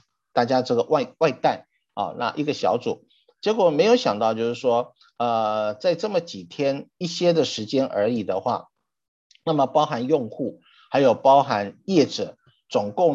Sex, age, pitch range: male, 50-69, 125-180 Hz